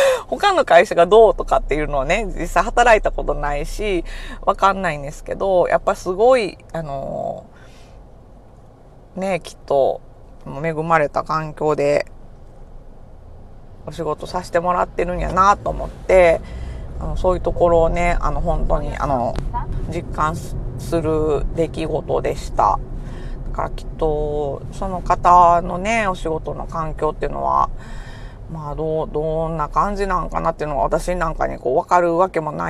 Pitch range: 145-180 Hz